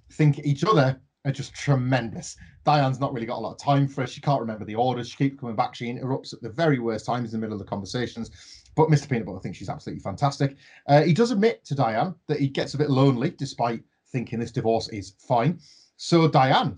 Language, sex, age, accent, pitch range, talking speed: English, male, 30-49, British, 120-150 Hz, 235 wpm